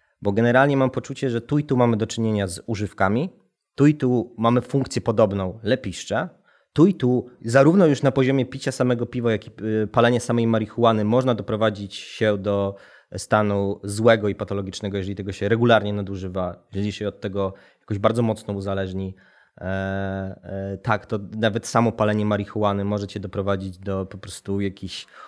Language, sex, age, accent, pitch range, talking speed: Polish, male, 20-39, native, 100-120 Hz, 165 wpm